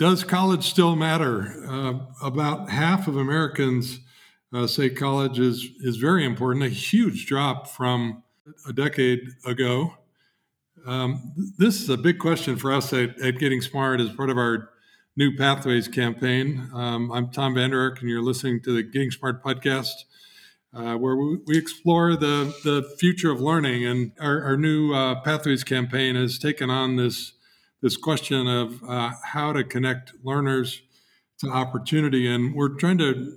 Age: 50-69